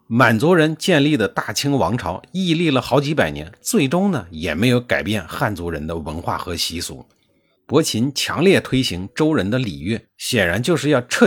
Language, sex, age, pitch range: Chinese, male, 50-69, 95-150 Hz